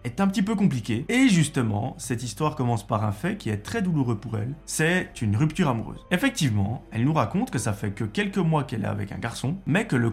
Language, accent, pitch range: French, French, 110-155 Hz